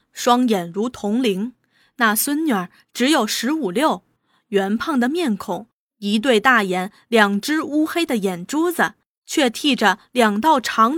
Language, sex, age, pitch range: Chinese, female, 20-39, 210-315 Hz